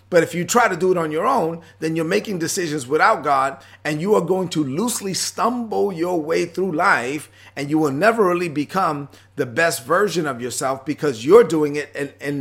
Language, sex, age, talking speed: English, male, 40-59, 215 wpm